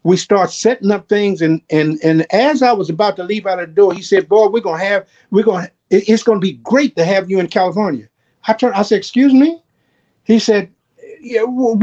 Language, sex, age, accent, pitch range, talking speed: English, male, 50-69, American, 155-215 Hz, 235 wpm